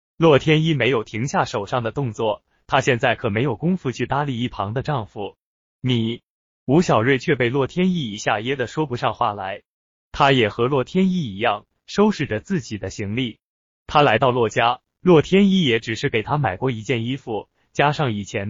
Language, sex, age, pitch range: Chinese, male, 20-39, 115-150 Hz